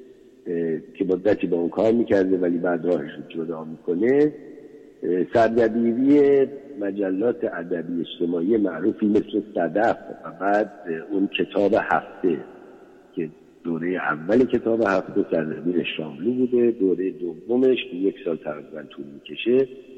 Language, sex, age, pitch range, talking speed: Persian, male, 60-79, 90-130 Hz, 115 wpm